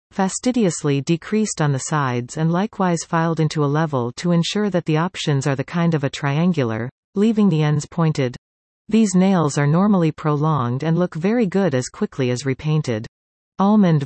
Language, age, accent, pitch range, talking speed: English, 40-59, American, 135-185 Hz, 170 wpm